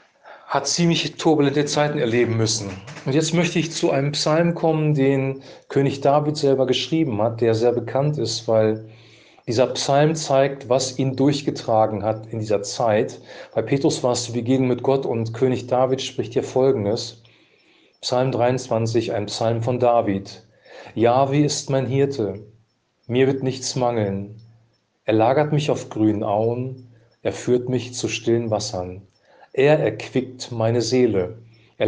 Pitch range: 110-140 Hz